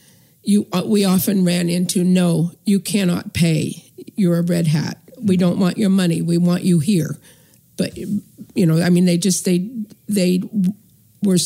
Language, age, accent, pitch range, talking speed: English, 50-69, American, 165-195 Hz, 170 wpm